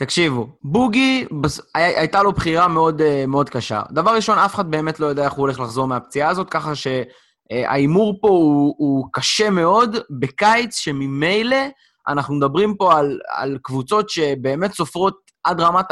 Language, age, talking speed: English, 20-39, 140 wpm